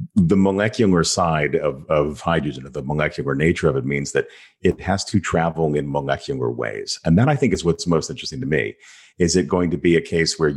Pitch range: 75-95 Hz